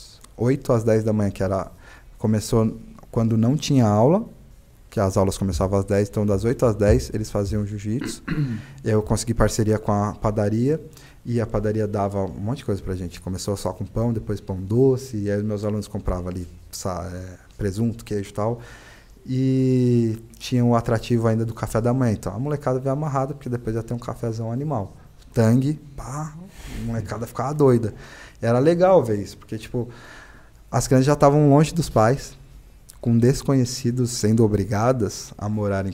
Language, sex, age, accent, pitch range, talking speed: Portuguese, male, 20-39, Brazilian, 105-130 Hz, 180 wpm